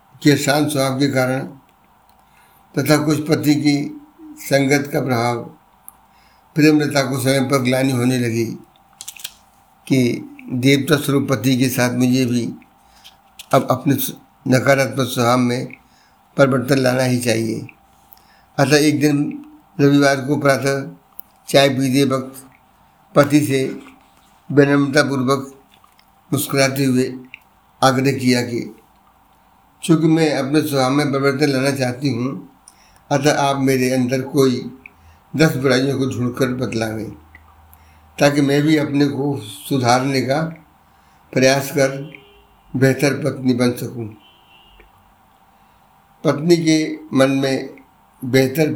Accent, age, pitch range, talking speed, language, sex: native, 60-79, 130-145 Hz, 110 wpm, Hindi, male